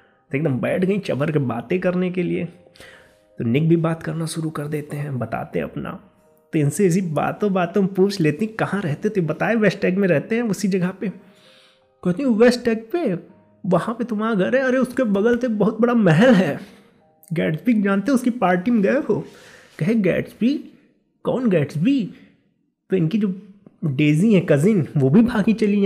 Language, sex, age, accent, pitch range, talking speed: Hindi, male, 20-39, native, 160-225 Hz, 185 wpm